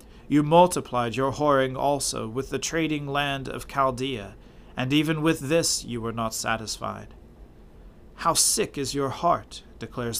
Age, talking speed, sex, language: 40-59, 145 wpm, male, English